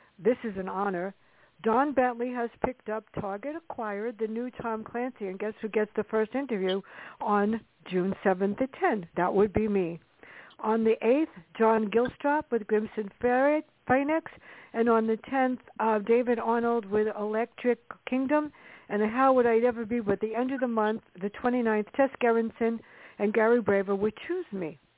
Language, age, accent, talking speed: English, 60-79, American, 170 wpm